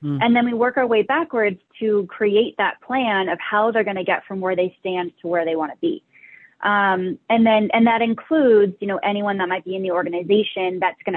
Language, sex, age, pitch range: English, female, 20-39, 180-215 Hz